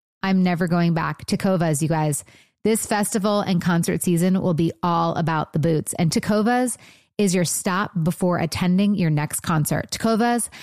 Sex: female